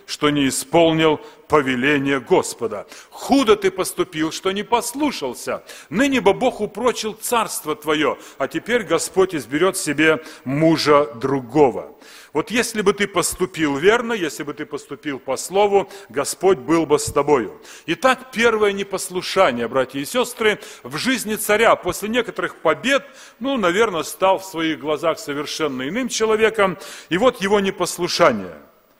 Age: 40-59